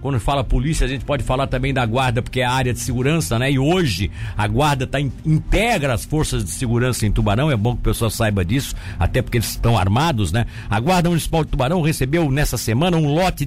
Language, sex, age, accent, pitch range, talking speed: Portuguese, male, 60-79, Brazilian, 125-195 Hz, 235 wpm